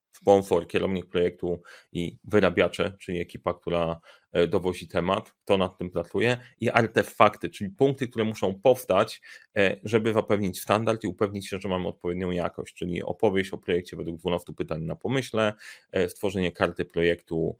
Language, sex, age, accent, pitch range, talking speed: Polish, male, 30-49, native, 95-115 Hz, 145 wpm